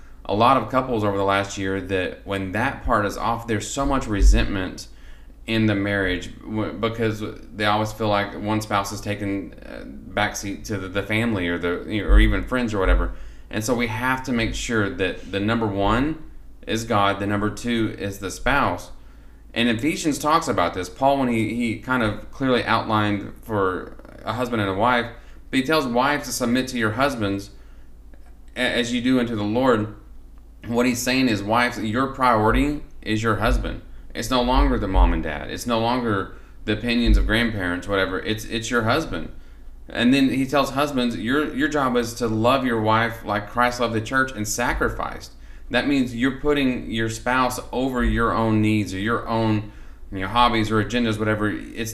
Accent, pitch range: American, 100-120 Hz